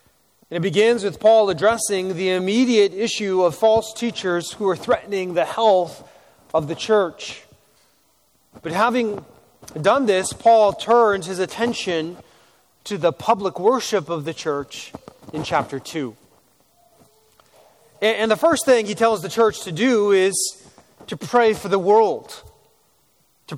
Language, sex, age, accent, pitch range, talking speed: English, male, 30-49, American, 175-220 Hz, 135 wpm